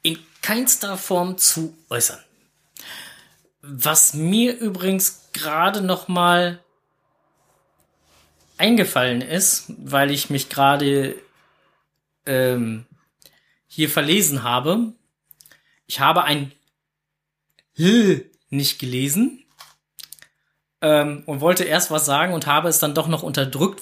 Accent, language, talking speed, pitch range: German, German, 100 wpm, 140-185 Hz